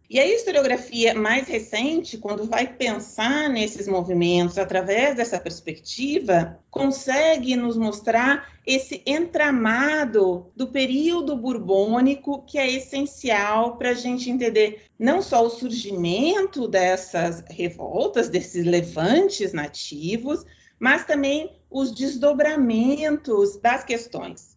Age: 40-59